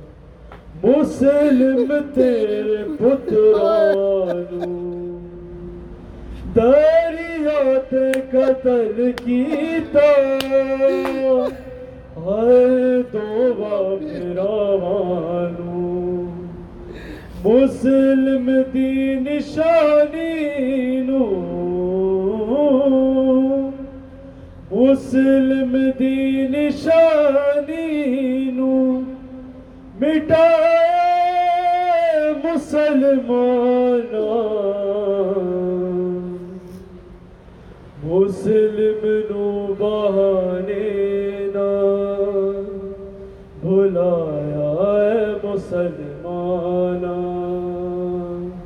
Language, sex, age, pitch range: Urdu, male, 30-49, 195-270 Hz